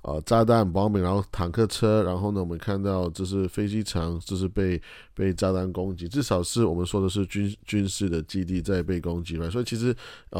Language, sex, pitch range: Chinese, male, 90-105 Hz